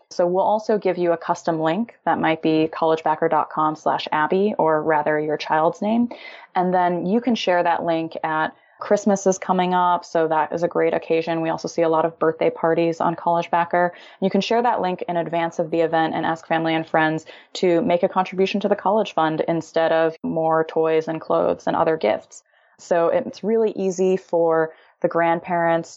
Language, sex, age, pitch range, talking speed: English, female, 20-39, 160-180 Hz, 200 wpm